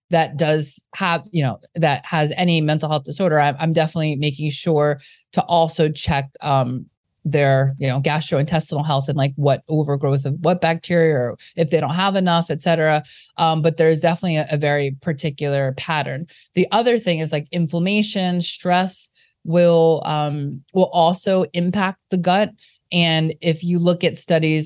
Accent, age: American, 30-49